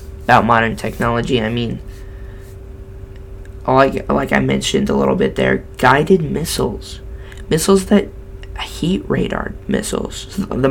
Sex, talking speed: male, 125 wpm